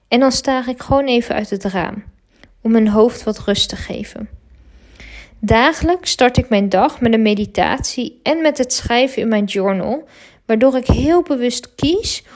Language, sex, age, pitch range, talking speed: Dutch, female, 20-39, 215-260 Hz, 175 wpm